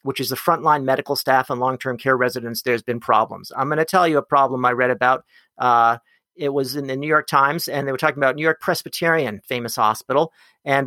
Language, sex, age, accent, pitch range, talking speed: English, male, 40-59, American, 130-170 Hz, 230 wpm